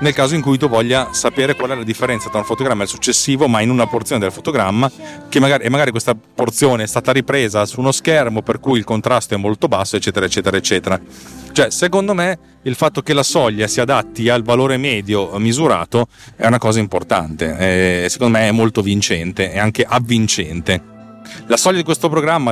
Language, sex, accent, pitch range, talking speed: Italian, male, native, 105-130 Hz, 205 wpm